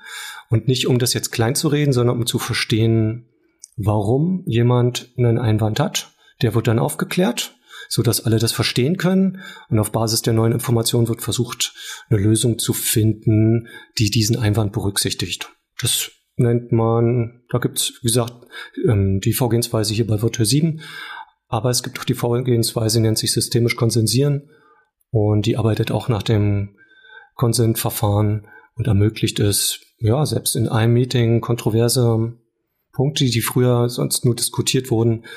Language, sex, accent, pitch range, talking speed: German, male, German, 115-130 Hz, 150 wpm